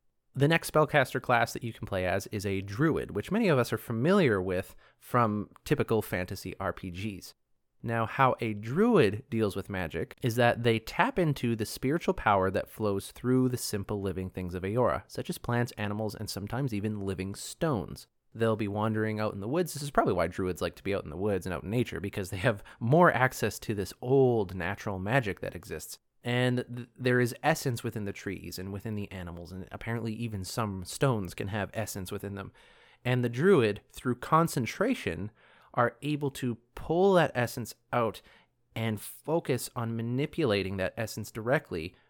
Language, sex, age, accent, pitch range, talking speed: English, male, 30-49, American, 100-125 Hz, 190 wpm